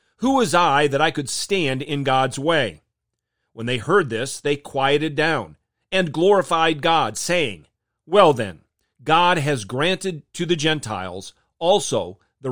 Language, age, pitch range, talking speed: English, 40-59, 120-160 Hz, 150 wpm